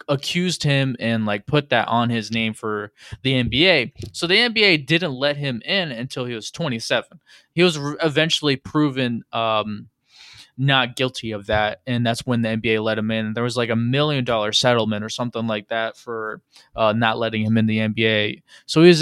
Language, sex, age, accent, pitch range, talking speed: English, male, 20-39, American, 115-155 Hz, 195 wpm